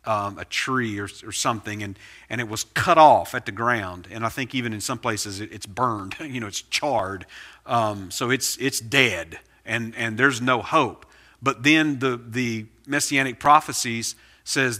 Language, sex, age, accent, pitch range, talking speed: English, male, 40-59, American, 105-145 Hz, 185 wpm